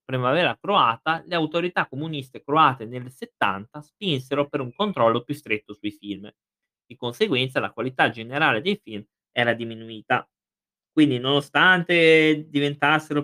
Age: 20-39